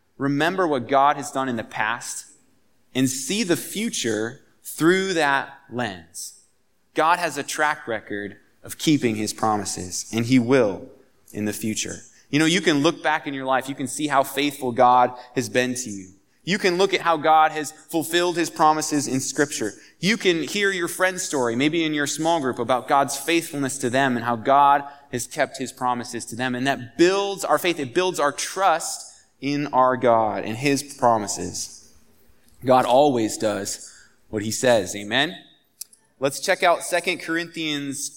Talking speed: 180 wpm